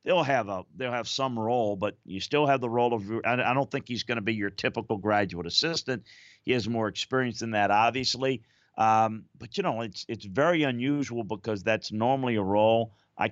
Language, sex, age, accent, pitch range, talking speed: English, male, 50-69, American, 100-120 Hz, 205 wpm